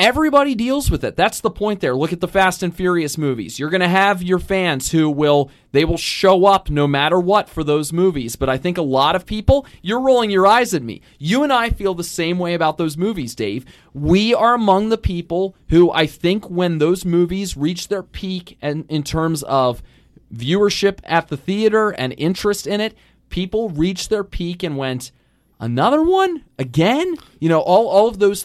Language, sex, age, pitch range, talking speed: English, male, 30-49, 135-190 Hz, 205 wpm